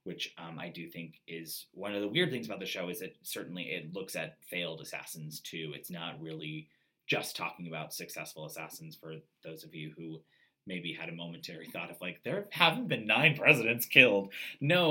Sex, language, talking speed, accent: male, English, 200 wpm, American